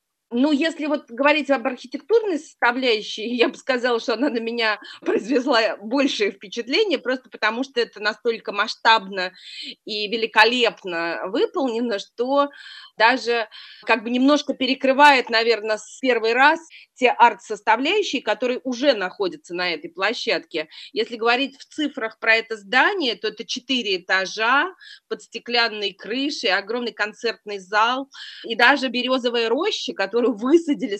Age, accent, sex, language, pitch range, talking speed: 30-49, native, female, Russian, 210-270 Hz, 130 wpm